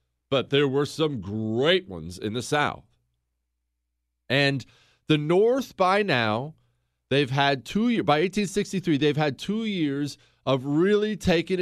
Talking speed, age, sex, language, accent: 140 wpm, 40-59, male, English, American